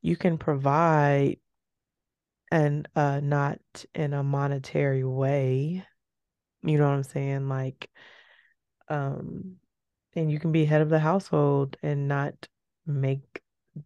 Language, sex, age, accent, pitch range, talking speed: English, female, 20-39, American, 140-160 Hz, 120 wpm